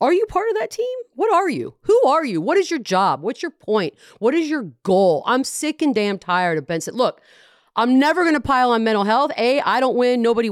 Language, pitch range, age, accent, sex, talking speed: English, 180-290 Hz, 40-59, American, female, 250 wpm